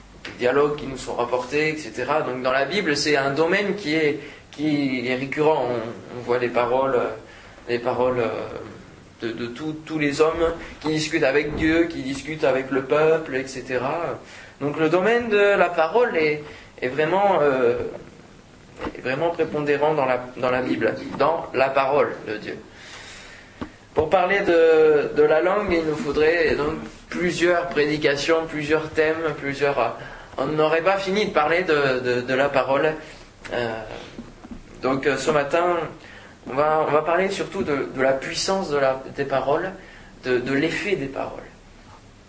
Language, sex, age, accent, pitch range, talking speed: French, male, 20-39, French, 125-175 Hz, 155 wpm